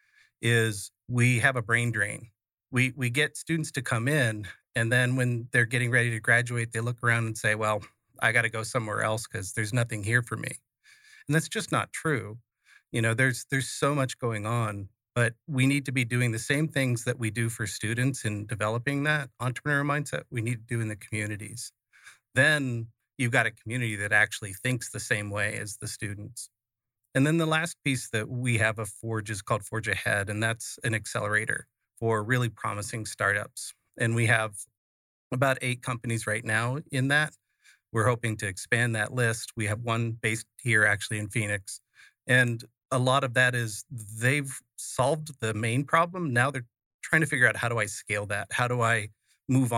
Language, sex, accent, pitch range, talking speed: English, male, American, 110-130 Hz, 195 wpm